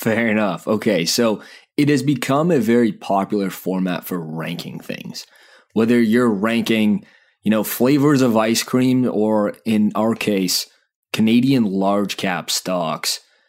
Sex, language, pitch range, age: male, English, 95-130 Hz, 20-39